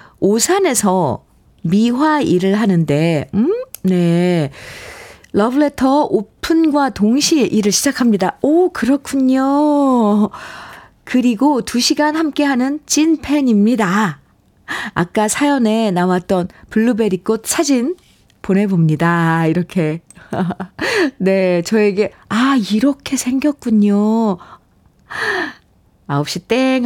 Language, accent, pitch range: Korean, native, 180-260 Hz